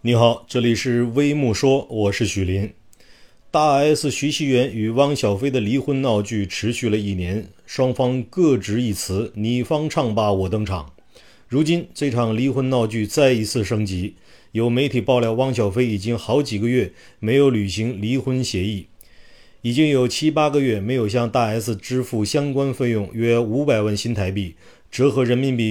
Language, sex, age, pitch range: Chinese, male, 30-49, 105-130 Hz